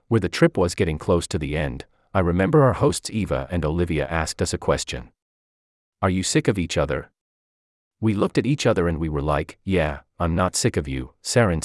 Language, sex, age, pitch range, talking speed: English, male, 40-59, 75-120 Hz, 215 wpm